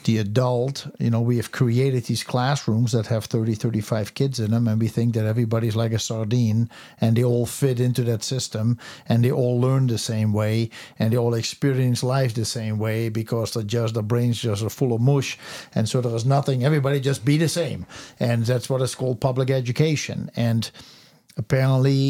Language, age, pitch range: English, 60-79, 120-150 Hz